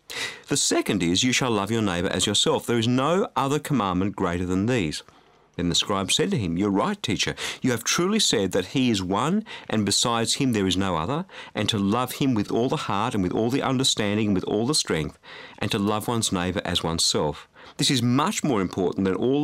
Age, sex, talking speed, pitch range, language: 50-69, male, 230 wpm, 100-150 Hz, English